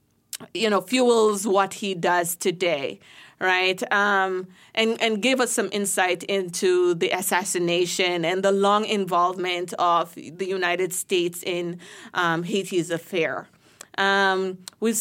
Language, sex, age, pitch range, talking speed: English, female, 20-39, 180-215 Hz, 130 wpm